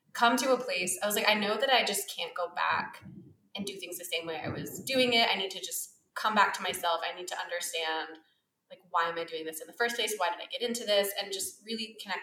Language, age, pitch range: English, 20-39, 180-235 Hz